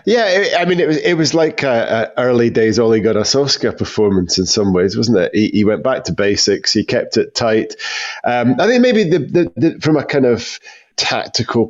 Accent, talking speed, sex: British, 215 wpm, male